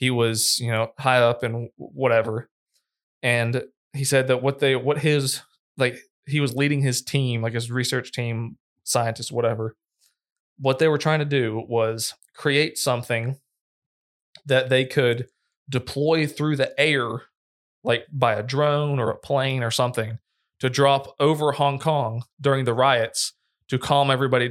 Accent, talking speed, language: American, 155 wpm, English